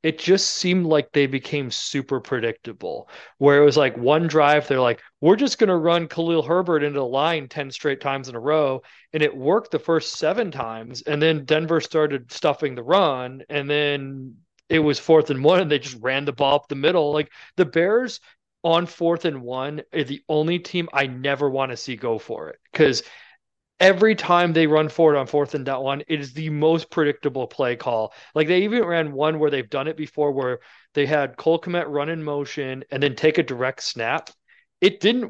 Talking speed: 210 wpm